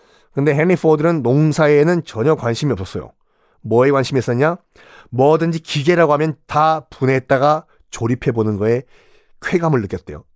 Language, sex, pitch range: Korean, male, 120-180 Hz